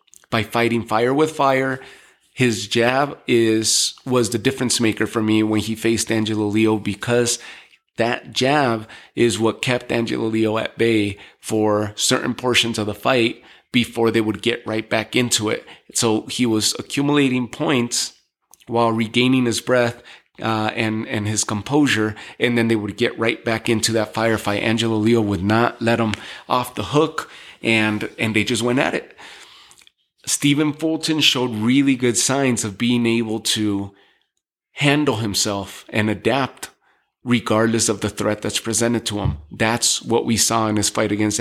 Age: 30-49